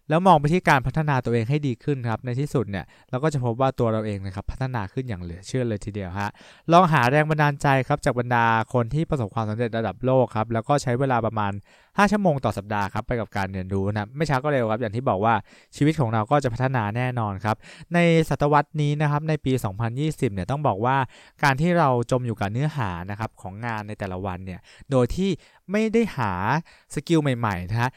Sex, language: male, English